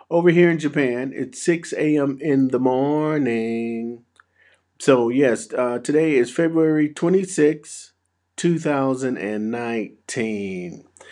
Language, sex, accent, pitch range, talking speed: English, male, American, 110-150 Hz, 115 wpm